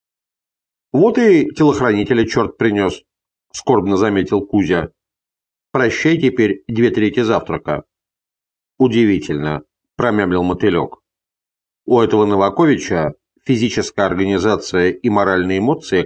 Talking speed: 90 wpm